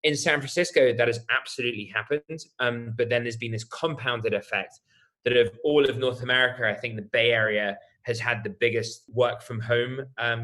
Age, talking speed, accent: 20-39, 195 wpm, British